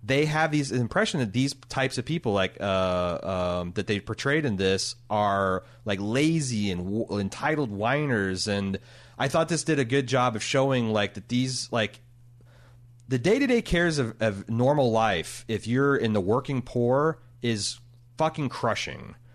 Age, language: 30-49, English